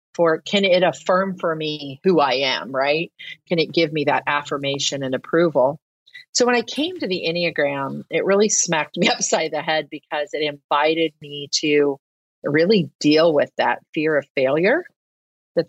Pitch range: 145-180 Hz